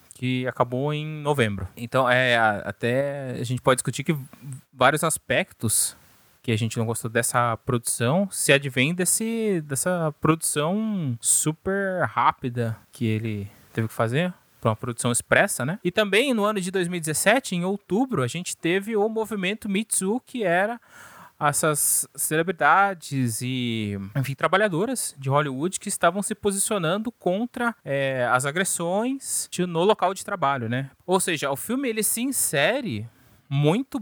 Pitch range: 130-195 Hz